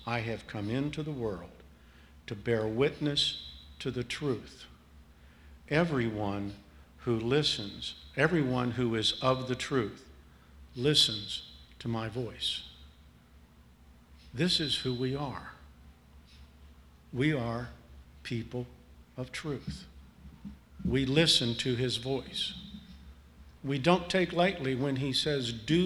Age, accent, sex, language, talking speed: 50-69, American, male, English, 110 wpm